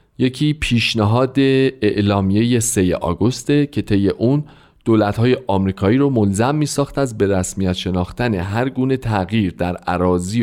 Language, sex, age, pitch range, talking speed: Persian, male, 40-59, 100-140 Hz, 120 wpm